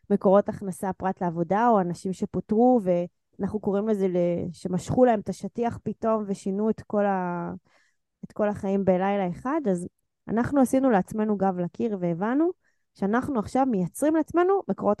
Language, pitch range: Hebrew, 180-235 Hz